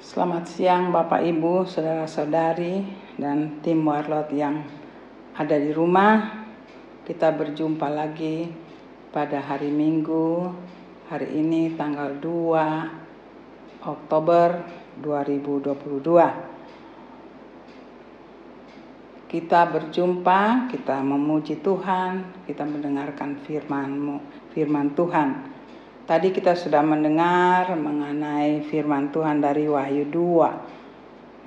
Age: 50-69